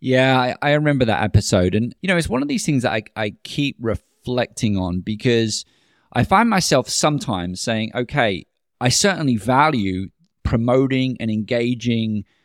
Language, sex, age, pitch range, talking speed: English, male, 20-39, 110-135 Hz, 160 wpm